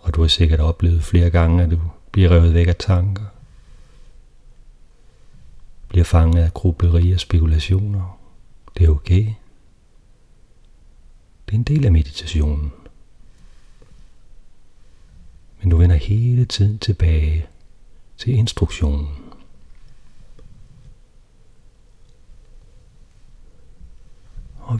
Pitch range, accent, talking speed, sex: 80-100 Hz, native, 90 wpm, male